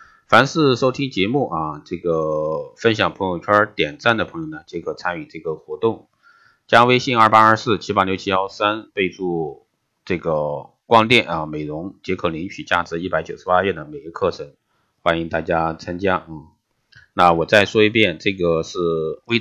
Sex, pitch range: male, 85-115 Hz